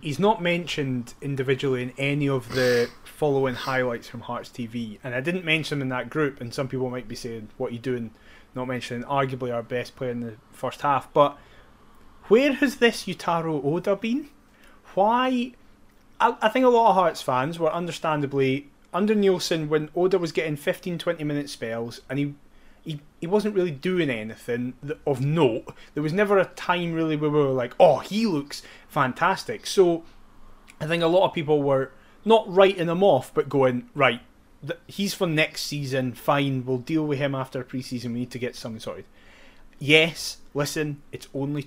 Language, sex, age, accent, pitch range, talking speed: English, male, 20-39, British, 130-175 Hz, 185 wpm